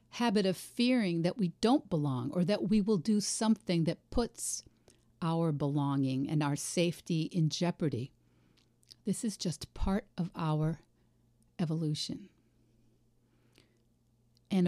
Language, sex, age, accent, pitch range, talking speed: English, female, 50-69, American, 135-185 Hz, 125 wpm